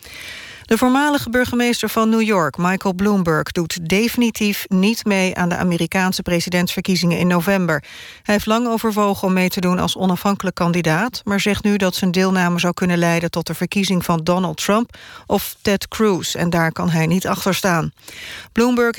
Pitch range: 175-215 Hz